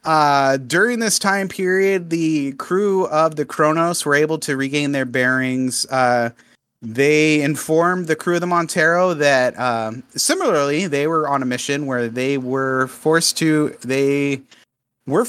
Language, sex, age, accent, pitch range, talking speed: English, male, 30-49, American, 125-160 Hz, 155 wpm